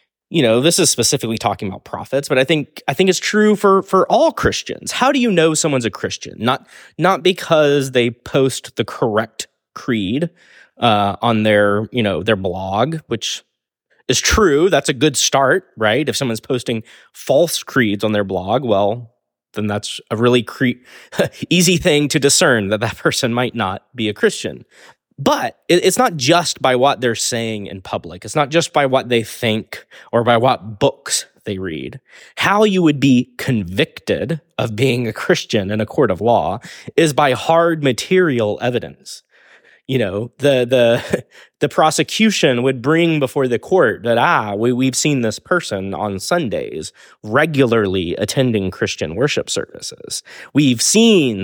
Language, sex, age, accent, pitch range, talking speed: English, male, 20-39, American, 110-160 Hz, 170 wpm